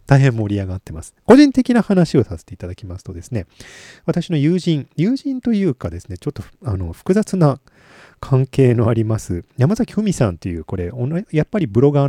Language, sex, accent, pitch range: Japanese, male, native, 95-155 Hz